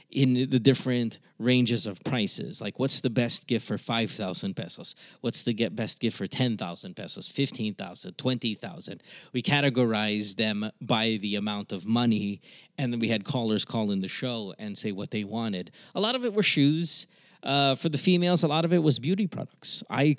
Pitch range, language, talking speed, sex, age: 115-155 Hz, English, 200 wpm, male, 20-39